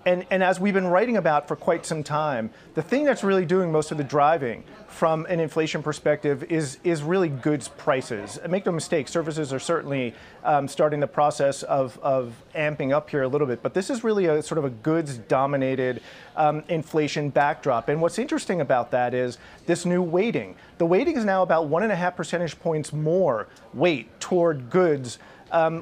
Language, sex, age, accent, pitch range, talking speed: English, male, 40-59, American, 150-185 Hz, 190 wpm